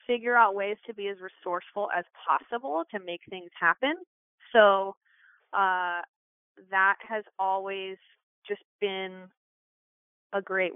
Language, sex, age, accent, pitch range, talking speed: English, female, 20-39, American, 185-230 Hz, 125 wpm